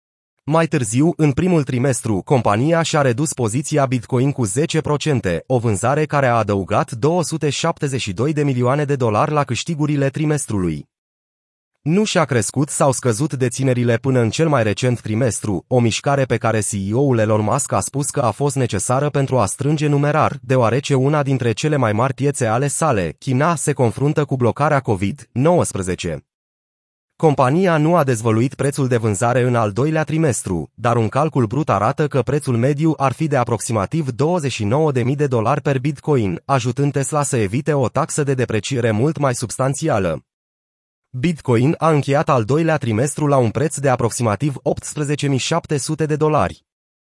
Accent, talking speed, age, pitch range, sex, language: native, 155 wpm, 30-49, 115-150 Hz, male, Romanian